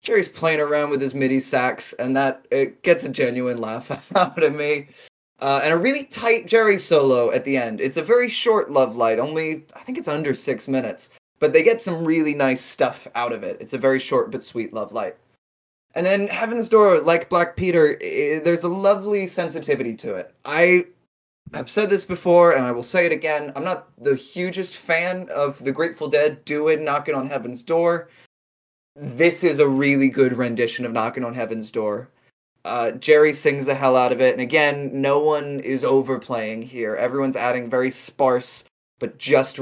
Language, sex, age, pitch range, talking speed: English, male, 20-39, 125-175 Hz, 195 wpm